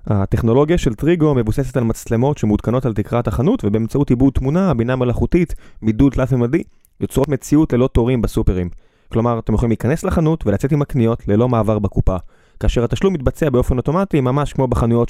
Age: 20-39